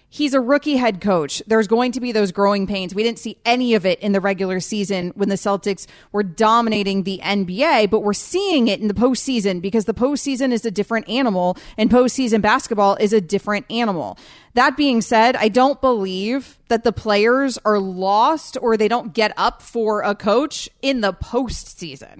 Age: 30-49